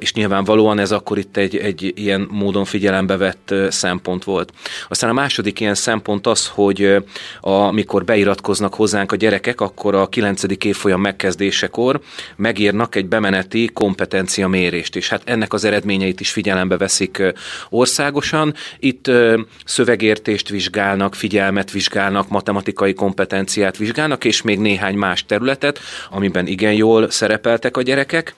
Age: 30-49